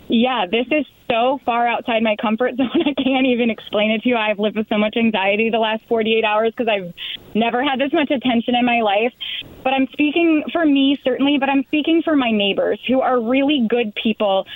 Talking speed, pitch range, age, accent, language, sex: 220 wpm, 200-245 Hz, 20-39, American, English, female